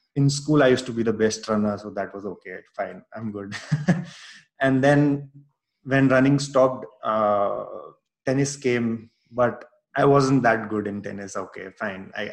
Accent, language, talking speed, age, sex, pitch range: Indian, English, 165 wpm, 20-39, male, 105-130 Hz